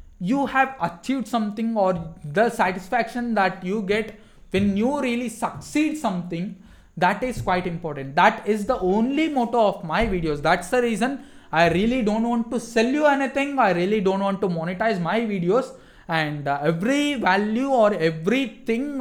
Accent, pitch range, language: Indian, 170-235 Hz, English